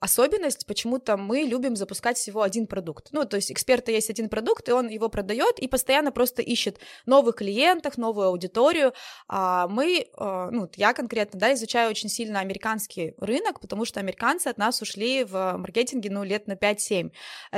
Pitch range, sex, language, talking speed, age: 205-260 Hz, female, Russian, 165 wpm, 20-39